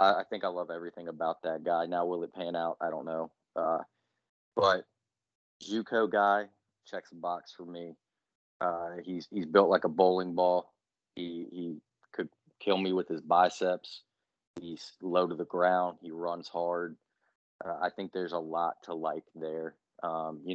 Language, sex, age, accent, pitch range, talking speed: English, male, 20-39, American, 85-90 Hz, 175 wpm